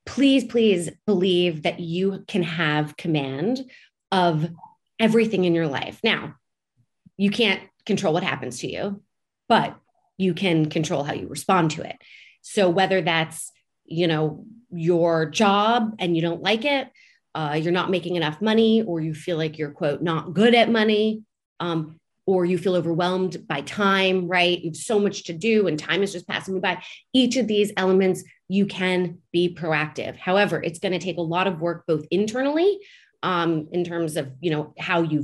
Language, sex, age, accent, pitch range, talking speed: English, female, 30-49, American, 165-210 Hz, 180 wpm